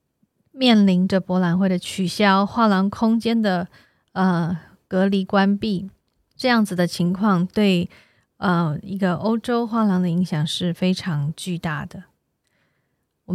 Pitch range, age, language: 180-210 Hz, 20-39, Chinese